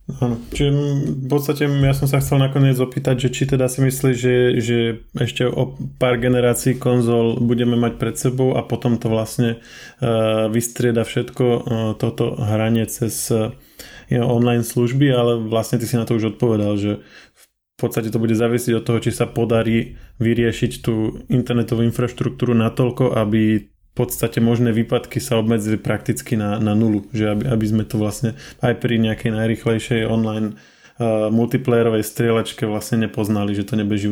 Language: Slovak